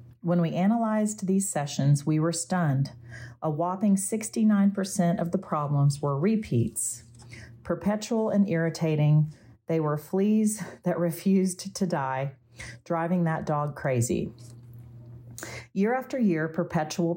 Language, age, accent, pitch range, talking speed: English, 40-59, American, 140-180 Hz, 120 wpm